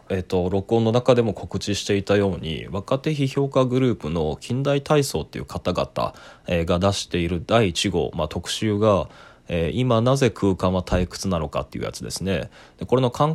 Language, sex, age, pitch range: Japanese, male, 20-39, 85-120 Hz